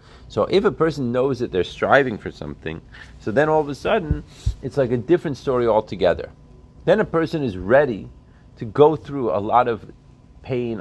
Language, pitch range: English, 105-135 Hz